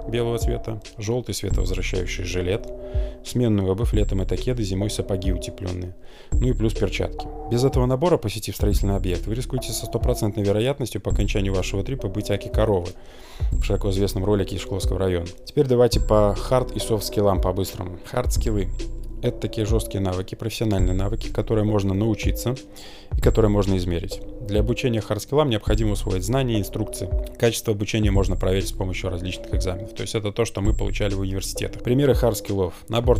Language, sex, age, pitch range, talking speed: Russian, male, 20-39, 95-115 Hz, 165 wpm